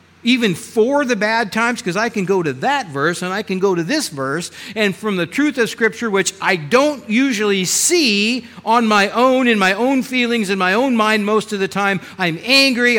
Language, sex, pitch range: English, male, 145-225 Hz